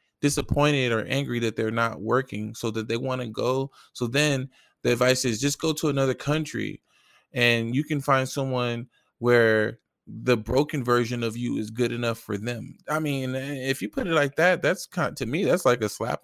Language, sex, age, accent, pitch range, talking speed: English, male, 20-39, American, 115-150 Hz, 205 wpm